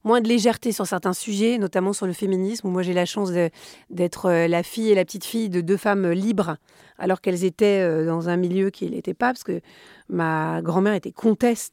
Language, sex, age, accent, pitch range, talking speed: French, female, 30-49, French, 185-225 Hz, 210 wpm